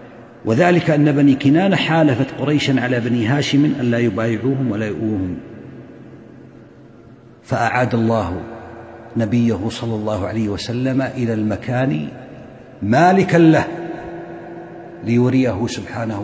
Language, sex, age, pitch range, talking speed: Arabic, male, 50-69, 100-135 Hz, 100 wpm